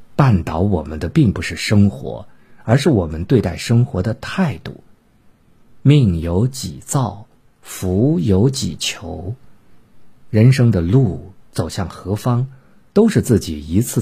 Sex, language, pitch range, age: male, Chinese, 90-130 Hz, 50-69